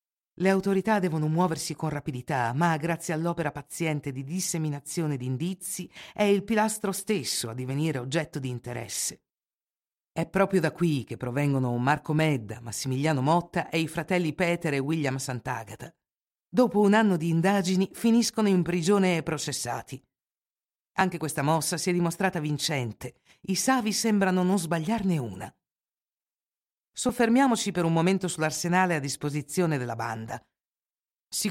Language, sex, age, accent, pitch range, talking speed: Italian, female, 50-69, native, 150-190 Hz, 140 wpm